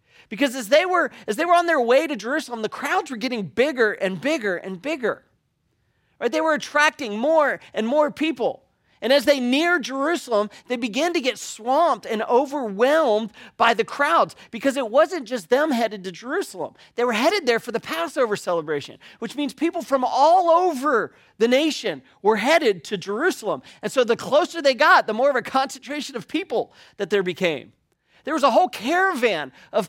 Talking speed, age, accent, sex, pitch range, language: 185 wpm, 40-59, American, male, 220-300 Hz, English